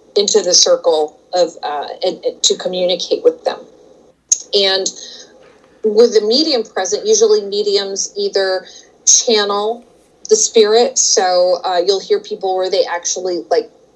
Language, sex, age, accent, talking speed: English, female, 30-49, American, 135 wpm